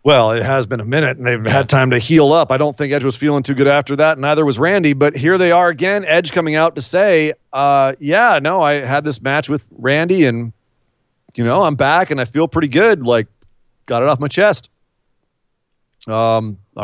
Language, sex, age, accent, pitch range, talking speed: English, male, 30-49, American, 125-195 Hz, 220 wpm